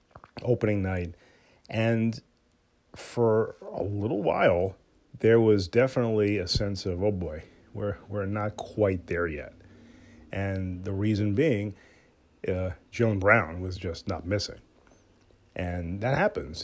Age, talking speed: 40-59, 125 wpm